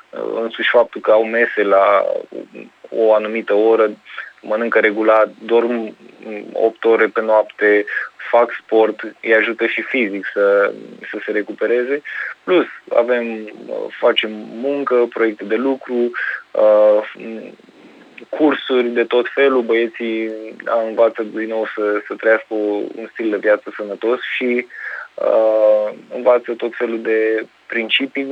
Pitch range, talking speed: 110-125 Hz, 115 wpm